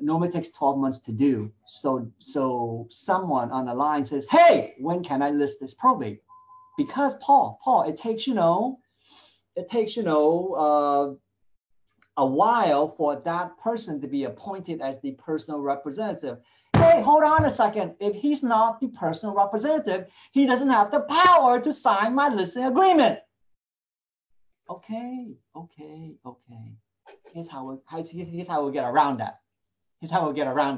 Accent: American